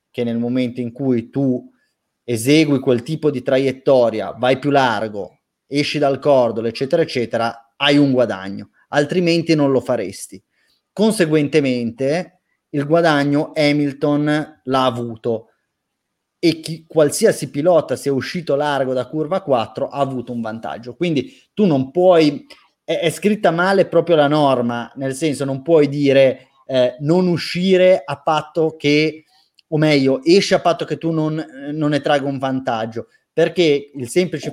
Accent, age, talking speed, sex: native, 30-49, 145 wpm, male